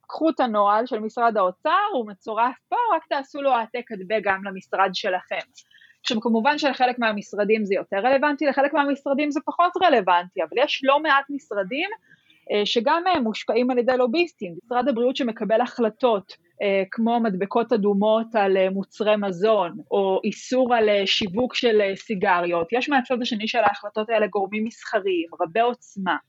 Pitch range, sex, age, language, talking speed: 205-265 Hz, female, 20-39, Hebrew, 145 wpm